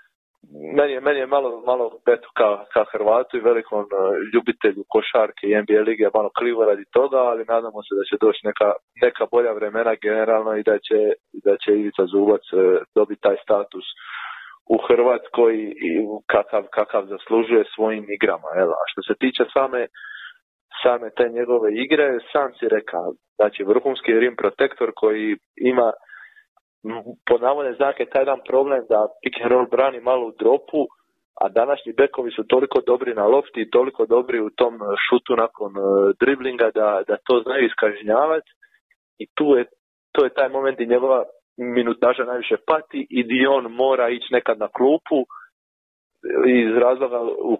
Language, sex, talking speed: Croatian, male, 155 wpm